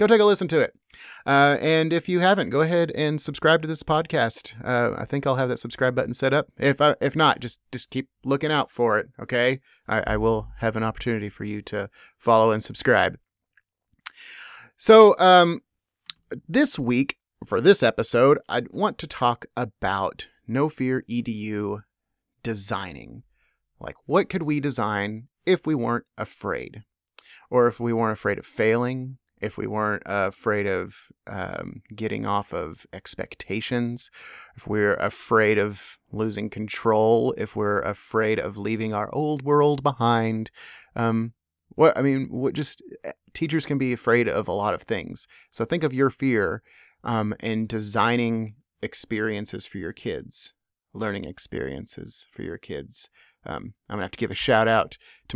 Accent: American